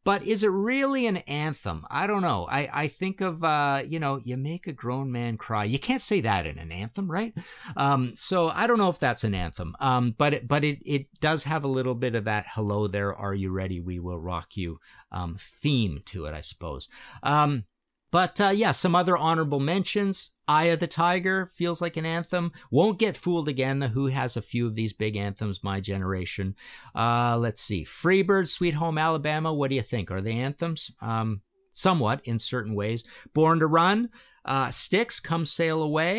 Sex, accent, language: male, American, English